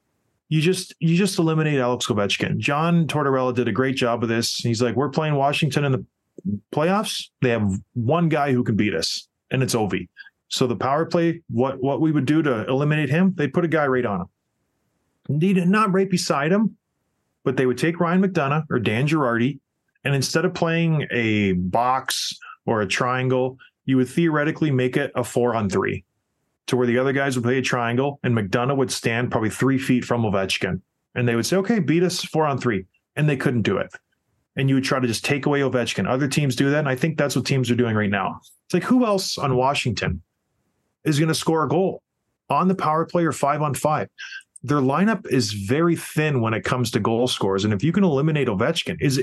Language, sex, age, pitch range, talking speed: English, male, 20-39, 125-165 Hz, 220 wpm